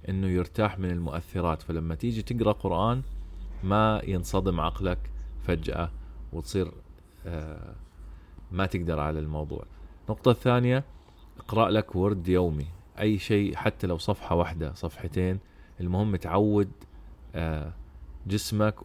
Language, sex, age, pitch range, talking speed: Arabic, male, 30-49, 80-105 Hz, 105 wpm